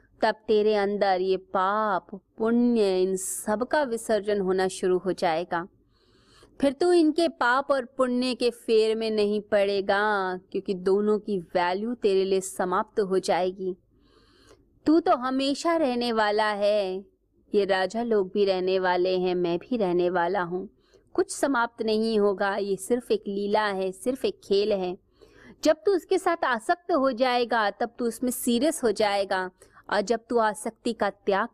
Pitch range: 190-250 Hz